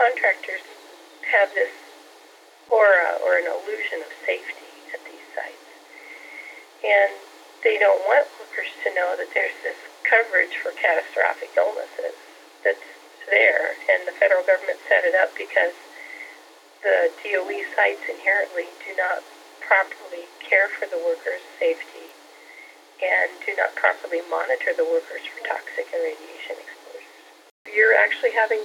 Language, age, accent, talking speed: English, 40-59, American, 130 wpm